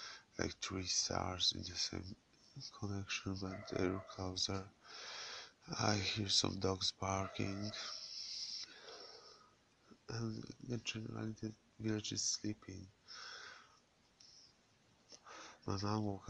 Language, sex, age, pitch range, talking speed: English, male, 20-39, 95-105 Hz, 90 wpm